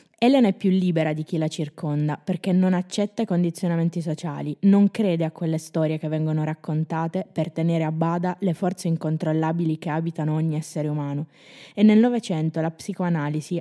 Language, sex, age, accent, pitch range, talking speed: Italian, female, 20-39, native, 160-190 Hz, 170 wpm